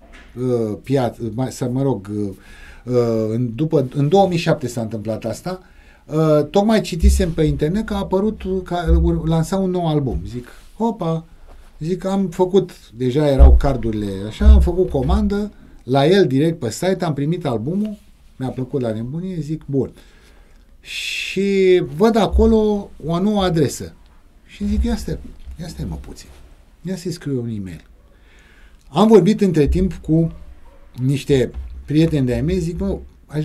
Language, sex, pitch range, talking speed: Romanian, male, 110-180 Hz, 140 wpm